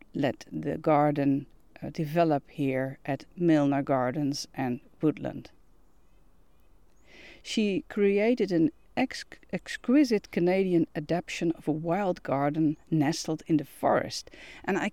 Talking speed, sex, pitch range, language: 115 wpm, female, 155-200 Hz, Dutch